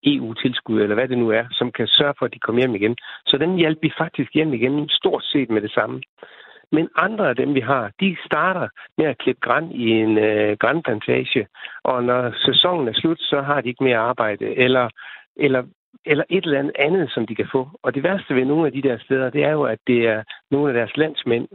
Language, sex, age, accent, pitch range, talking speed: Danish, male, 60-79, native, 120-155 Hz, 230 wpm